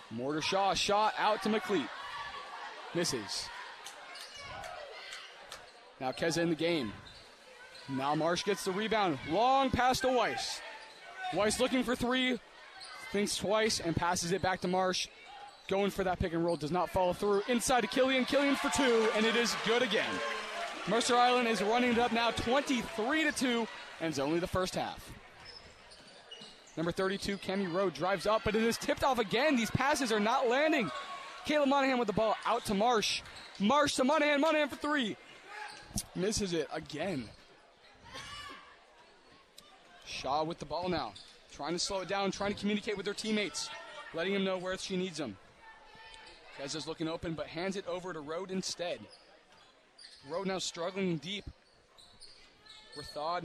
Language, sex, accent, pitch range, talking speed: English, male, American, 185-255 Hz, 160 wpm